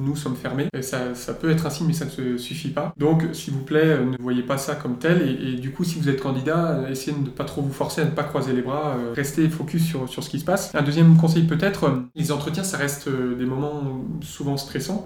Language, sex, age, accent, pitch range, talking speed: French, male, 20-39, French, 130-155 Hz, 260 wpm